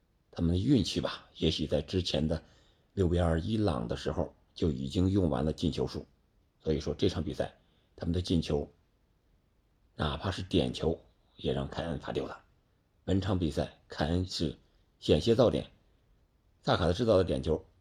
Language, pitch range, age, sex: Chinese, 80-100 Hz, 50-69, male